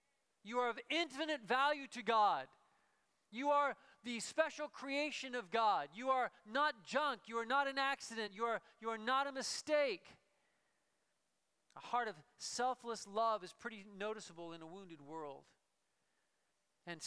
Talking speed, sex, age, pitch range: 150 wpm, male, 40-59, 200-255 Hz